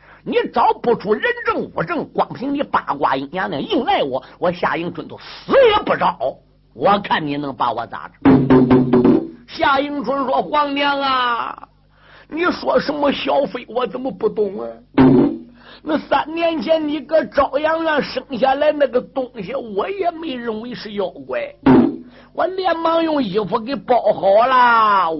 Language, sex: Chinese, male